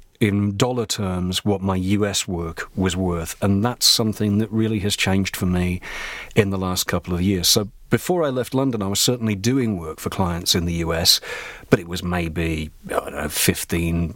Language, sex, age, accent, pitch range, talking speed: English, male, 40-59, British, 95-110 Hz, 200 wpm